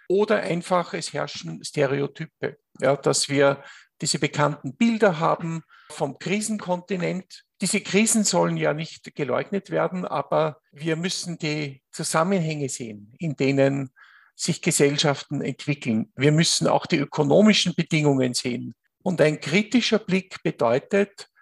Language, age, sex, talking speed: English, 50-69, male, 120 wpm